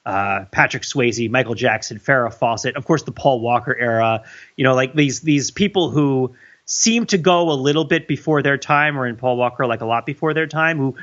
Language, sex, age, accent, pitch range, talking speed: English, male, 30-49, American, 125-155 Hz, 210 wpm